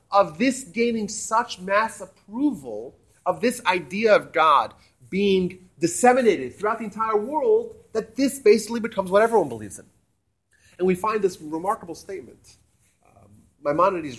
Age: 30-49